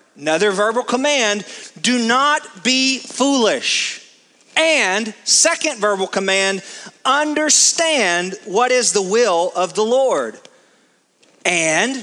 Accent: American